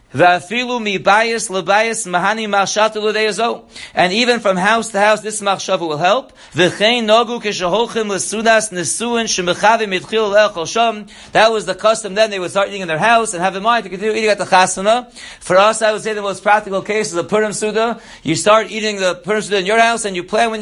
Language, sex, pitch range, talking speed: English, male, 185-220 Hz, 170 wpm